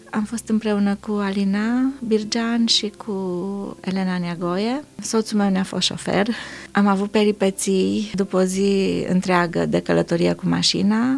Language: Romanian